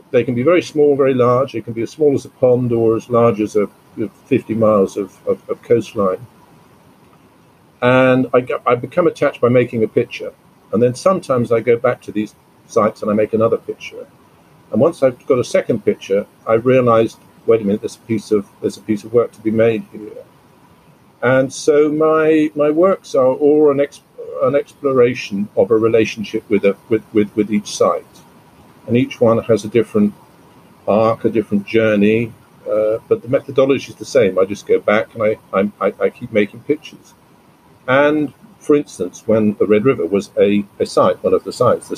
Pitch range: 110-160 Hz